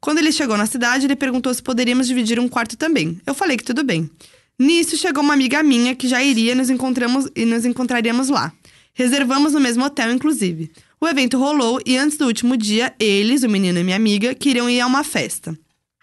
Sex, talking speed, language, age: female, 200 wpm, Portuguese, 20-39